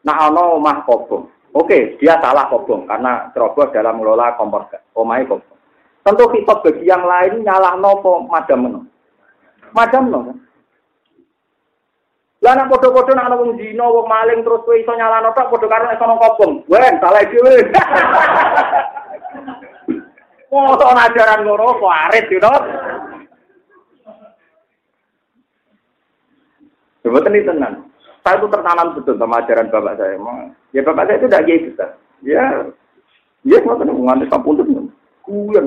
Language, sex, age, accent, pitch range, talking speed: Indonesian, male, 40-59, native, 185-295 Hz, 125 wpm